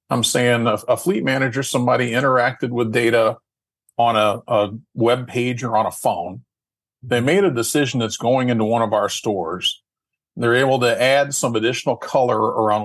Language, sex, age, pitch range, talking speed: English, male, 40-59, 110-130 Hz, 175 wpm